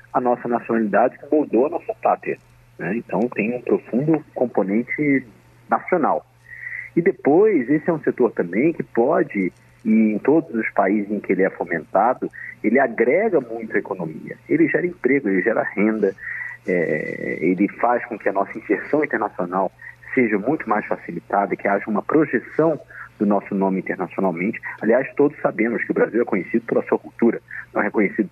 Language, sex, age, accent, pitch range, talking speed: Portuguese, male, 40-59, Brazilian, 105-150 Hz, 170 wpm